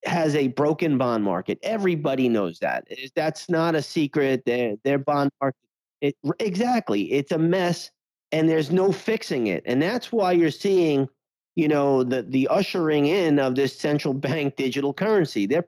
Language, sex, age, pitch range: English, male, 40-59, 135-170 Hz